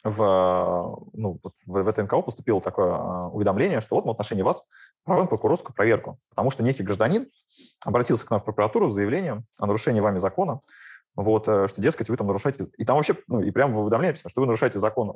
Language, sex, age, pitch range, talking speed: Russian, male, 20-39, 100-125 Hz, 210 wpm